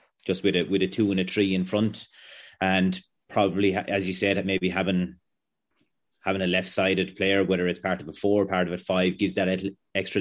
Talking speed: 210 wpm